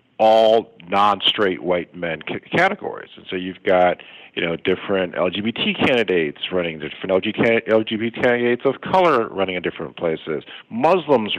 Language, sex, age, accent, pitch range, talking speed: English, male, 50-69, American, 100-130 Hz, 135 wpm